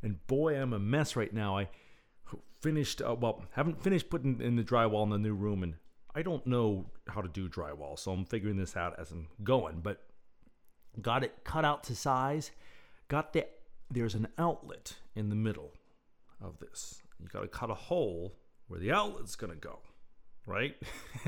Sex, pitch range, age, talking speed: male, 100-130 Hz, 40-59, 185 wpm